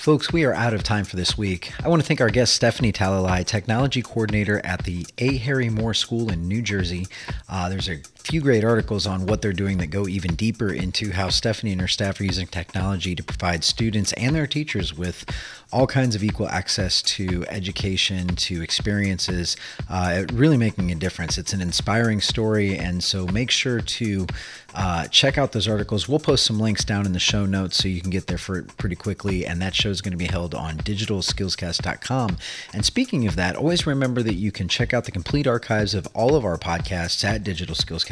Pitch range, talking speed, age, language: 95-120 Hz, 210 wpm, 30-49, English